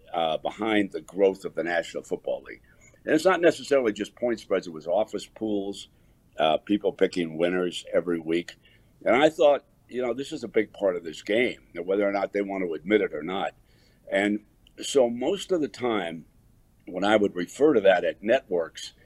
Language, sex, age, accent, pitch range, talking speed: English, male, 60-79, American, 105-140 Hz, 200 wpm